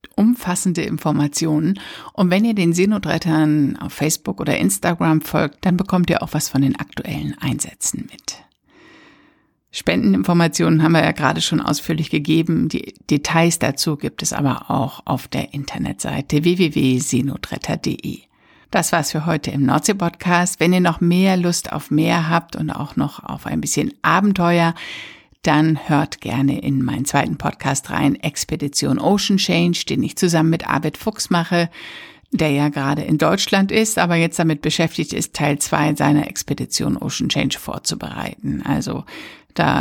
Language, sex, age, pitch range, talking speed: German, female, 60-79, 150-185 Hz, 150 wpm